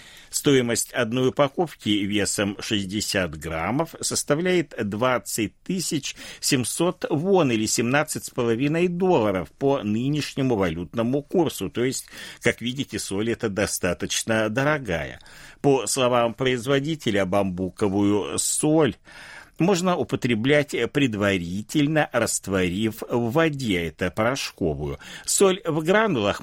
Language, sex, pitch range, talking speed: Russian, male, 105-150 Hz, 95 wpm